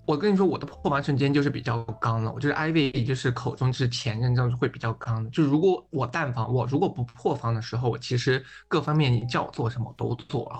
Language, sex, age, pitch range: Chinese, male, 20-39, 120-145 Hz